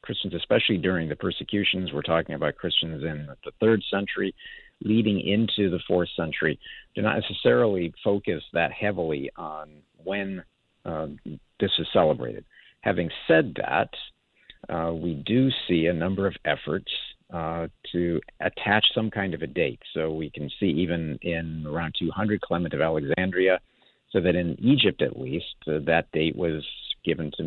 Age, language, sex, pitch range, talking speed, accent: 50-69, English, male, 80-100 Hz, 155 wpm, American